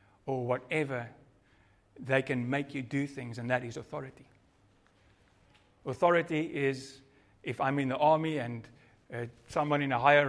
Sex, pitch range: male, 100-140 Hz